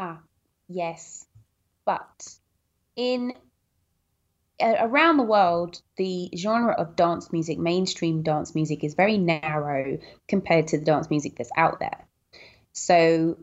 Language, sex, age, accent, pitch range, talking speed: English, female, 20-39, British, 150-175 Hz, 125 wpm